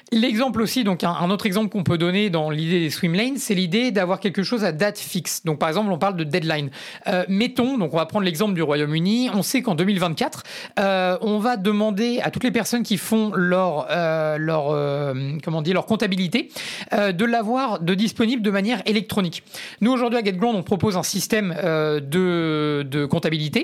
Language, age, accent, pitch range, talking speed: French, 30-49, French, 175-225 Hz, 205 wpm